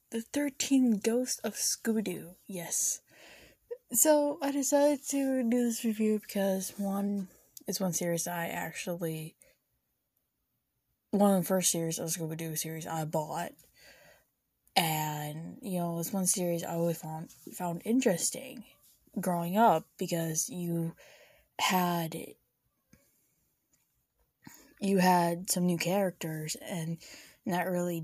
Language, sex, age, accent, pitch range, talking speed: English, female, 10-29, American, 170-225 Hz, 115 wpm